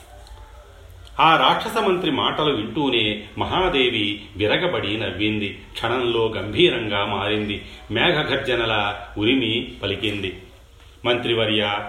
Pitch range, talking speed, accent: 105-130 Hz, 70 wpm, native